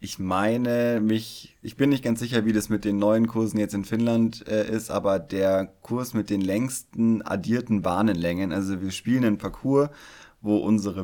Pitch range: 95-110 Hz